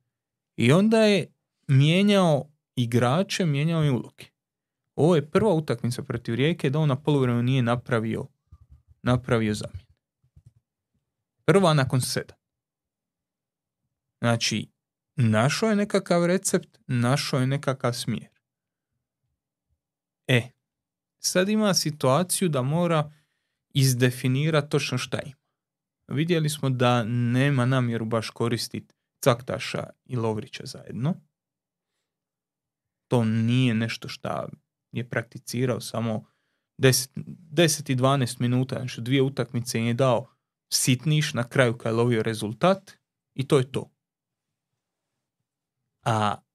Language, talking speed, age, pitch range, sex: Croatian, 105 wpm, 30-49, 120-150 Hz, male